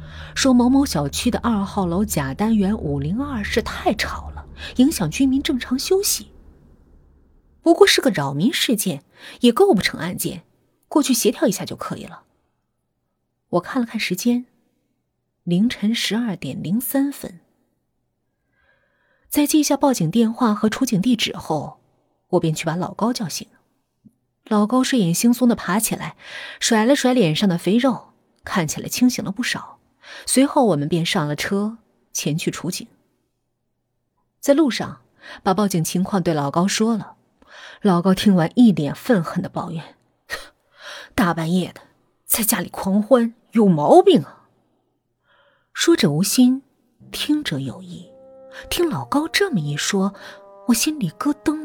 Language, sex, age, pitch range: Chinese, female, 30-49, 165-250 Hz